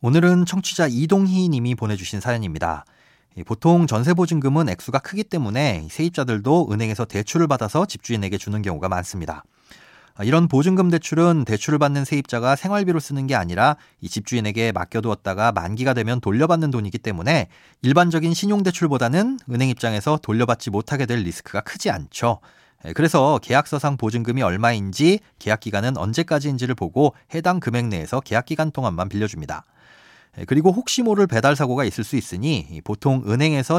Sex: male